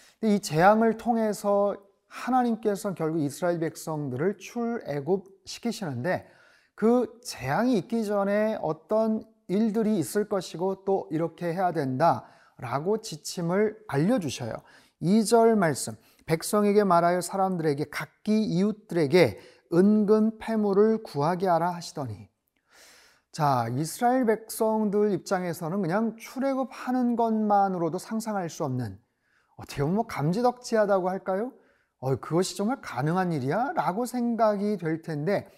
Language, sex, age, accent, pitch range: Korean, male, 30-49, native, 165-225 Hz